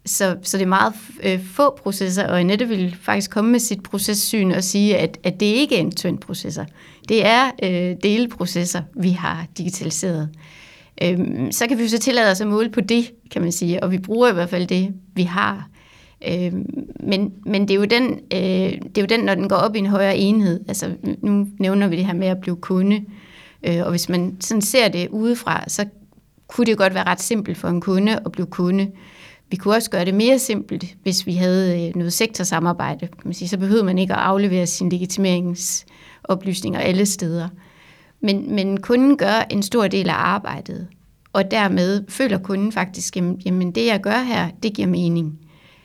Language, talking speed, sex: Danish, 200 wpm, female